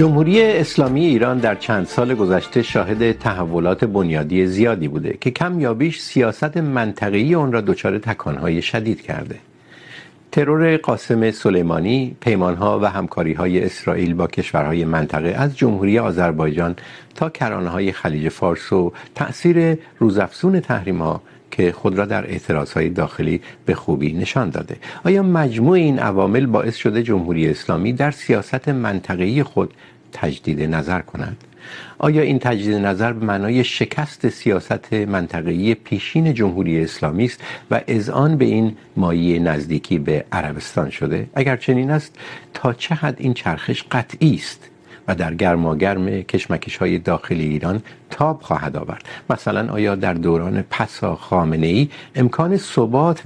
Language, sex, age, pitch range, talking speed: Urdu, male, 50-69, 90-135 Hz, 140 wpm